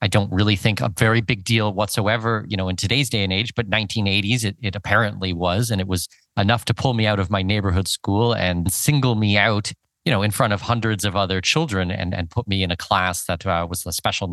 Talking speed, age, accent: 245 wpm, 30-49, American